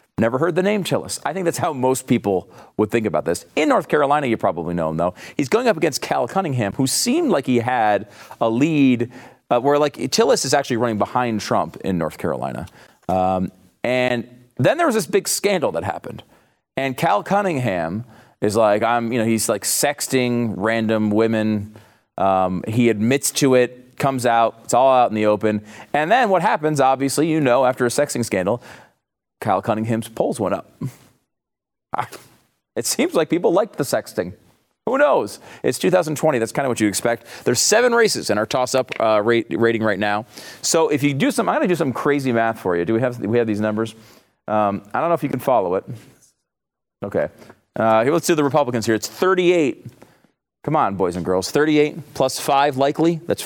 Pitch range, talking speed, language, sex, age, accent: 110-145 Hz, 200 wpm, English, male, 40-59, American